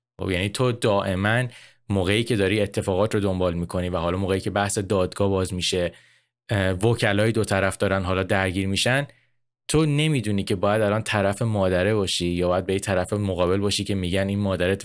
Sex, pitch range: male, 95-120 Hz